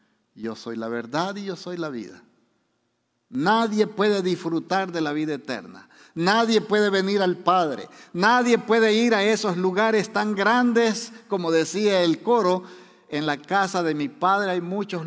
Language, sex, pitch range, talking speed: Spanish, male, 160-220 Hz, 165 wpm